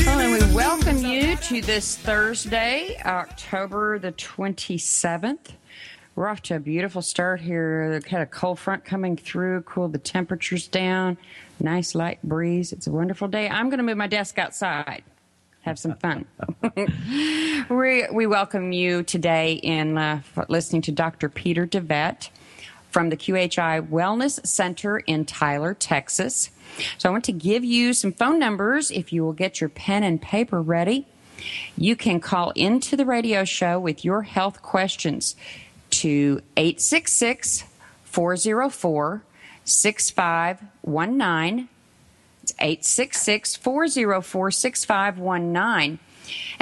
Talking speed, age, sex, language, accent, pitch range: 125 wpm, 40-59, female, English, American, 170-220 Hz